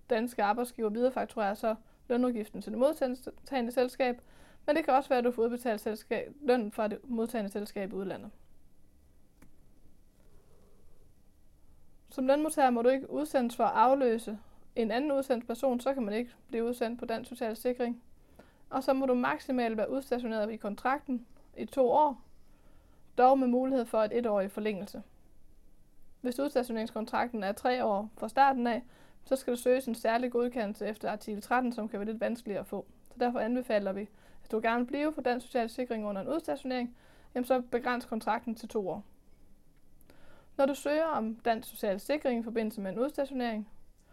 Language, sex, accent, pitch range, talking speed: Danish, female, native, 215-260 Hz, 175 wpm